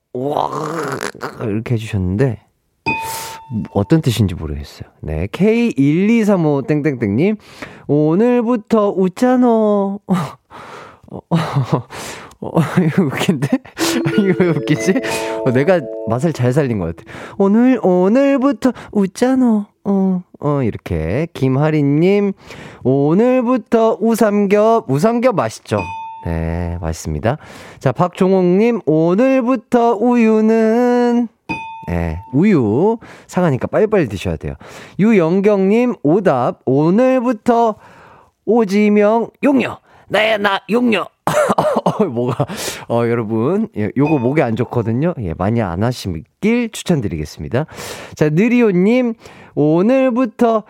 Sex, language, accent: male, Korean, native